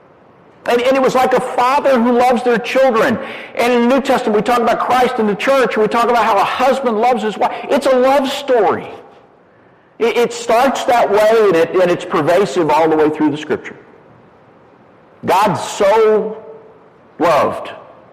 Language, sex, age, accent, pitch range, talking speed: English, male, 50-69, American, 165-250 Hz, 170 wpm